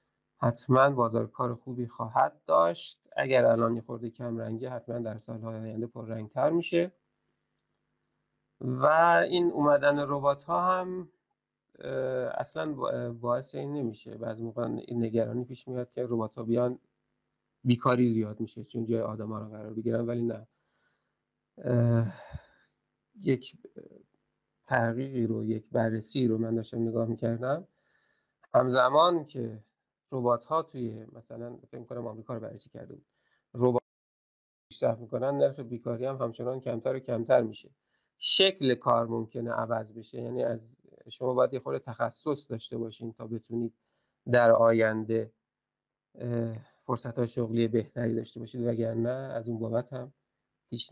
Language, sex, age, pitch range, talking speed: Persian, male, 40-59, 115-130 Hz, 135 wpm